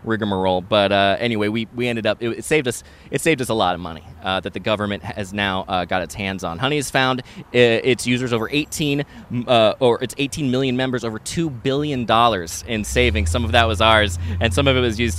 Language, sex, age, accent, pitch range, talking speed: English, male, 20-39, American, 100-130 Hz, 235 wpm